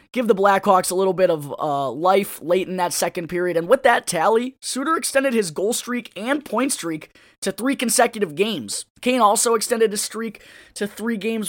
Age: 20-39